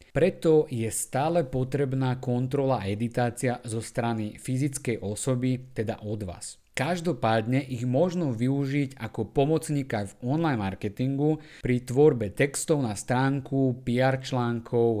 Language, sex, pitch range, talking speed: Slovak, male, 110-145 Hz, 120 wpm